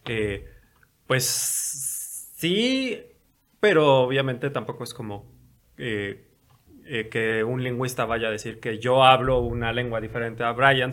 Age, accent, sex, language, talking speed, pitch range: 20-39, Mexican, male, Spanish, 130 wpm, 110-135 Hz